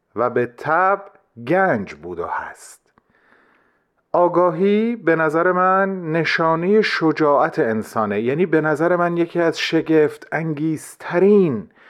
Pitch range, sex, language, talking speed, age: 130-185 Hz, male, Persian, 110 wpm, 40-59